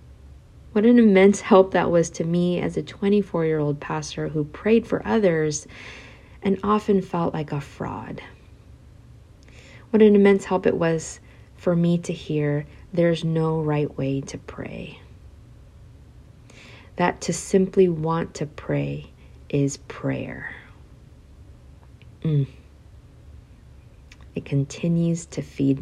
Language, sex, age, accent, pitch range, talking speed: English, female, 40-59, American, 140-185 Hz, 120 wpm